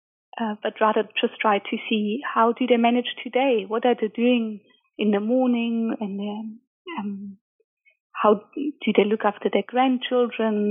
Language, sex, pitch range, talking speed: English, female, 210-250 Hz, 165 wpm